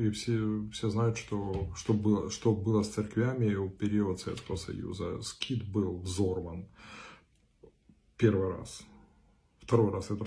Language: Russian